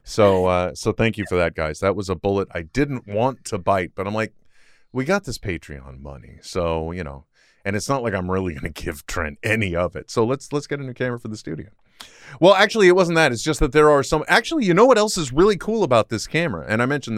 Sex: male